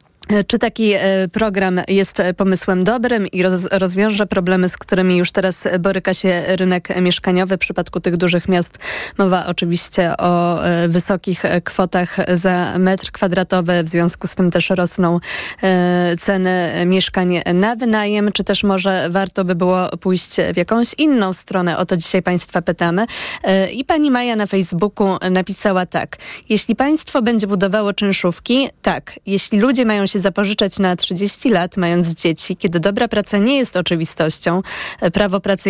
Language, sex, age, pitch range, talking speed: Polish, female, 20-39, 180-210 Hz, 145 wpm